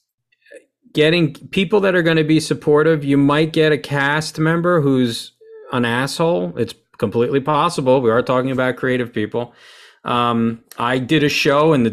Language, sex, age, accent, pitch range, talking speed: English, male, 40-59, American, 115-145 Hz, 165 wpm